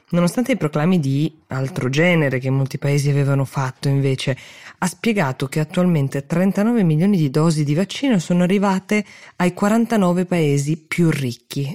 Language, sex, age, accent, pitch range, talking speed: Italian, female, 20-39, native, 135-185 Hz, 150 wpm